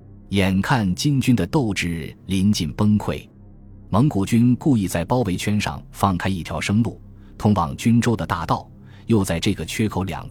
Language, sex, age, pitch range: Chinese, male, 20-39, 90-115 Hz